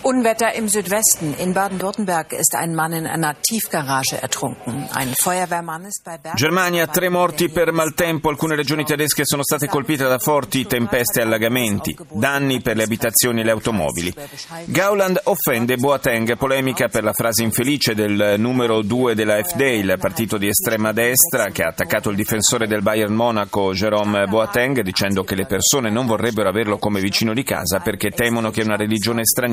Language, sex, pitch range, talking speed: Italian, male, 105-145 Hz, 55 wpm